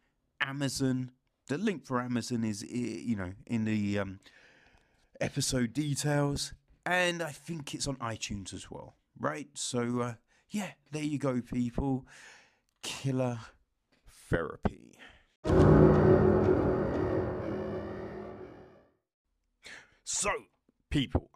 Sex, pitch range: male, 105-135 Hz